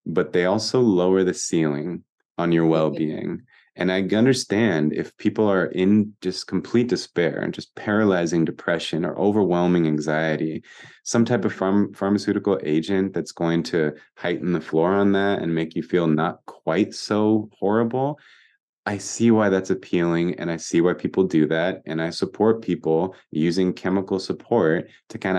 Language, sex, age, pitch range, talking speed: English, male, 20-39, 80-95 Hz, 160 wpm